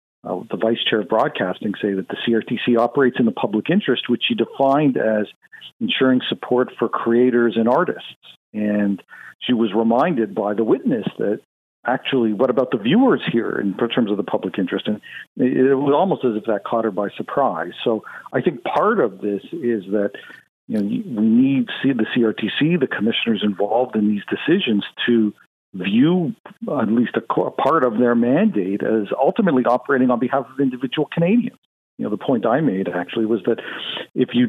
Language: English